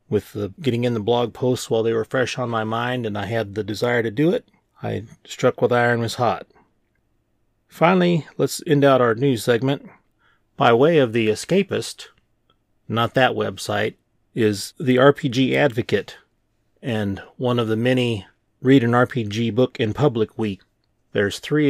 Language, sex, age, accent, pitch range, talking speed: English, male, 30-49, American, 110-130 Hz, 170 wpm